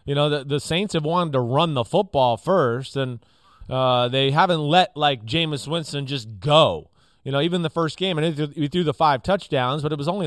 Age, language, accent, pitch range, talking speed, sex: 30-49, English, American, 130-200 Hz, 230 wpm, male